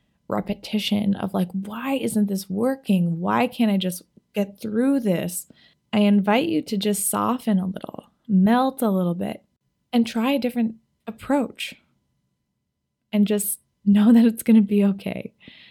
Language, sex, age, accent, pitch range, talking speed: English, female, 20-39, American, 185-225 Hz, 155 wpm